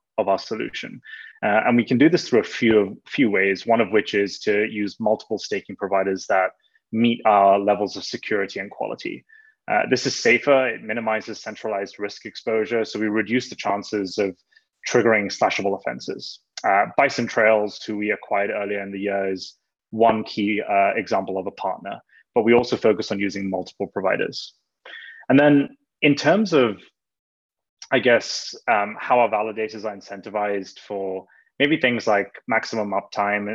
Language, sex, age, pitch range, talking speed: English, male, 20-39, 100-115 Hz, 170 wpm